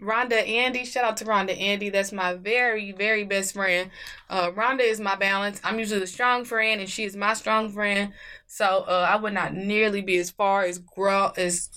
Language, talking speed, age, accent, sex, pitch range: English, 210 wpm, 10-29, American, female, 185-220 Hz